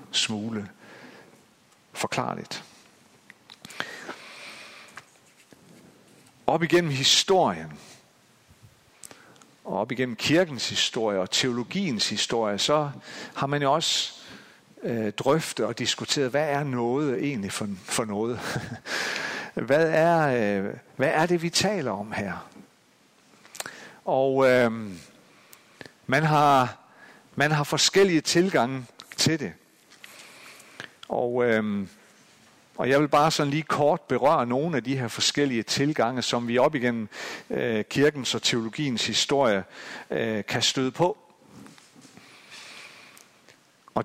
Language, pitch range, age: Danish, 115-145 Hz, 50-69